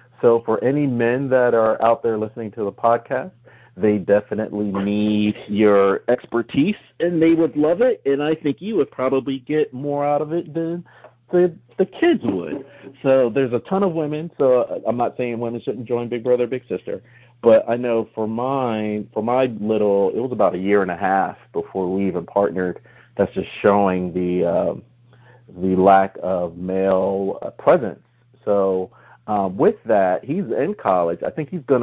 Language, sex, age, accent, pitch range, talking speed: English, male, 40-59, American, 100-130 Hz, 185 wpm